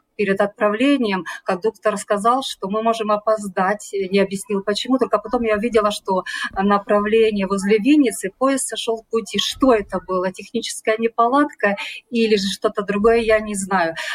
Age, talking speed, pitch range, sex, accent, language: 40-59, 150 wpm, 200-245 Hz, female, native, Russian